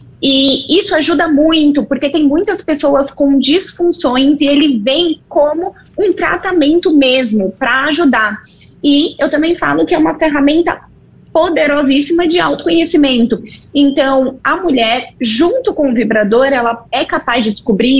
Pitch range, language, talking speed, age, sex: 235-300 Hz, Portuguese, 140 wpm, 20-39, female